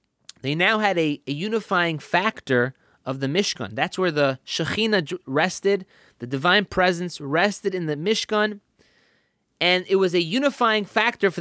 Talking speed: 155 wpm